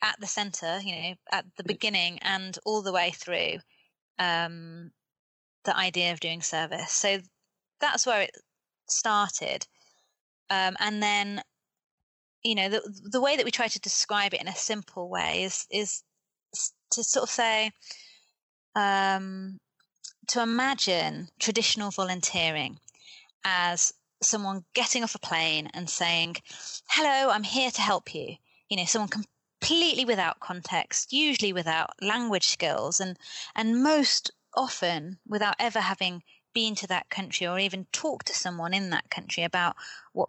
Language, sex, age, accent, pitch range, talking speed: English, female, 20-39, British, 180-225 Hz, 150 wpm